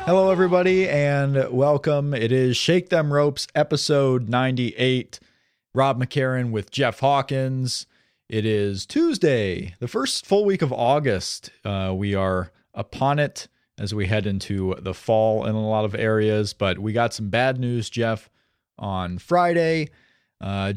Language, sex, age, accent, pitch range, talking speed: English, male, 30-49, American, 110-145 Hz, 145 wpm